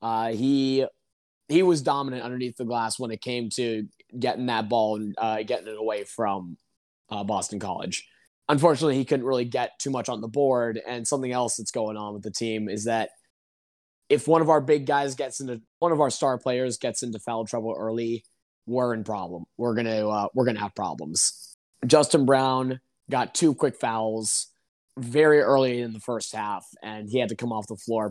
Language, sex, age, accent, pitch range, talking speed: English, male, 20-39, American, 110-135 Hz, 195 wpm